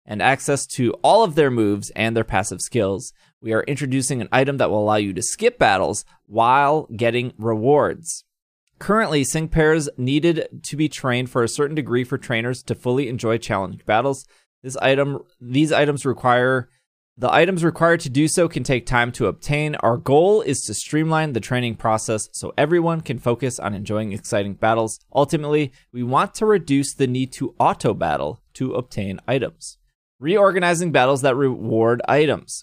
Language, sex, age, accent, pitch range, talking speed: English, male, 20-39, American, 115-150 Hz, 170 wpm